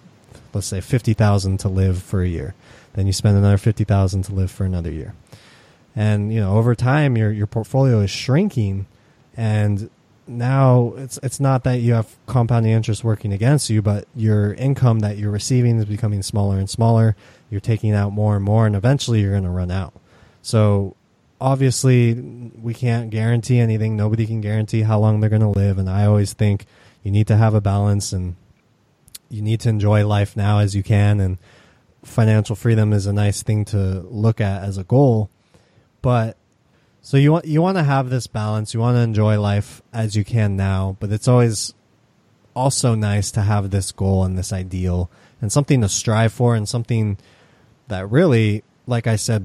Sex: male